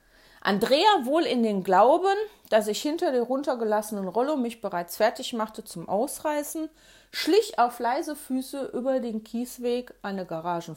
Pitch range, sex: 205-295 Hz, female